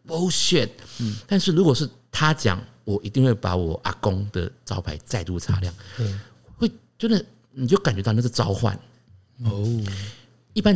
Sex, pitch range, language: male, 100-135 Hz, Chinese